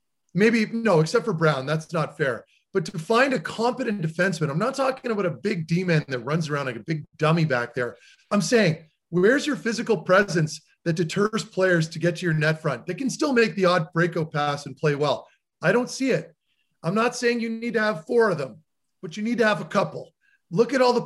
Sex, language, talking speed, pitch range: male, English, 230 wpm, 155-205 Hz